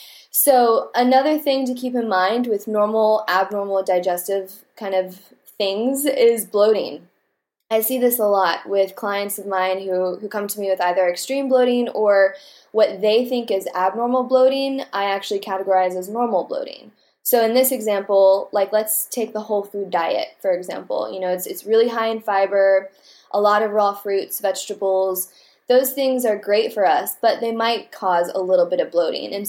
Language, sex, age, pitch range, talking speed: English, female, 10-29, 190-230 Hz, 185 wpm